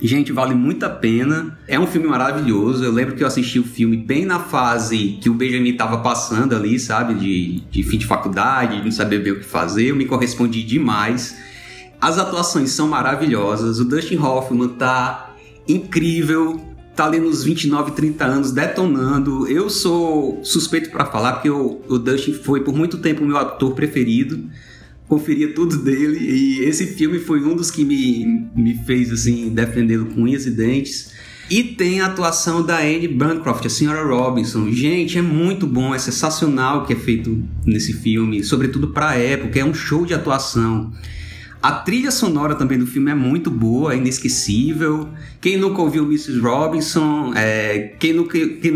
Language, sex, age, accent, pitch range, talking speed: Portuguese, male, 30-49, Brazilian, 115-155 Hz, 175 wpm